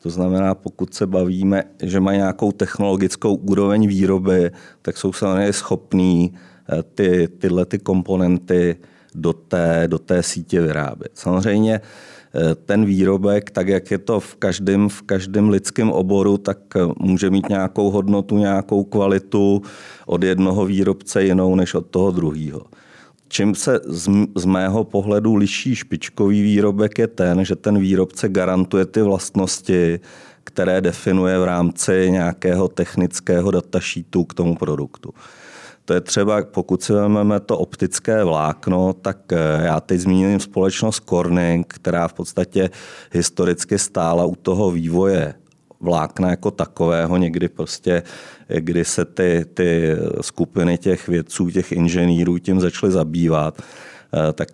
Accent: native